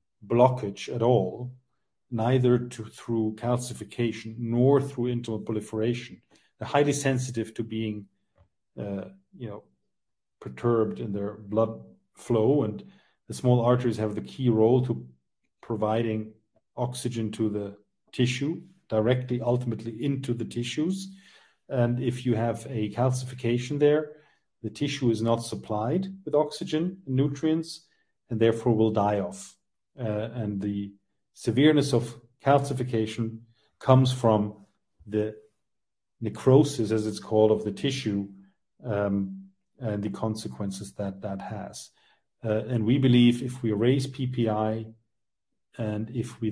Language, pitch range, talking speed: English, 105-125 Hz, 125 wpm